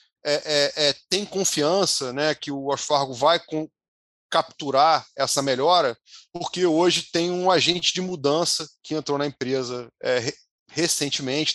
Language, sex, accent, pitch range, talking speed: Portuguese, male, Brazilian, 140-160 Hz, 140 wpm